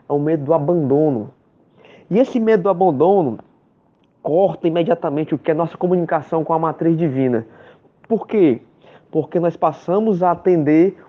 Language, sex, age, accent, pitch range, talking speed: Portuguese, male, 20-39, Brazilian, 160-195 Hz, 155 wpm